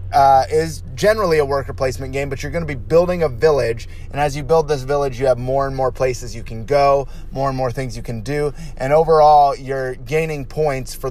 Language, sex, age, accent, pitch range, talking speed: English, male, 30-49, American, 125-150 Hz, 230 wpm